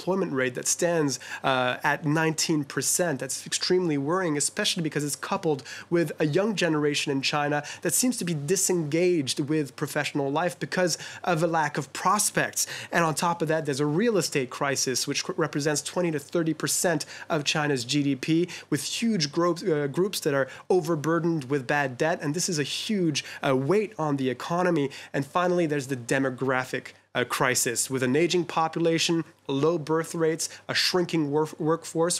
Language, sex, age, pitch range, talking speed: English, male, 20-39, 145-175 Hz, 170 wpm